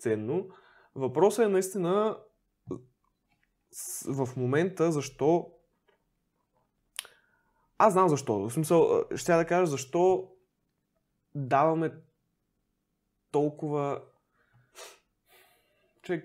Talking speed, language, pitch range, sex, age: 70 wpm, Bulgarian, 135-180 Hz, male, 20-39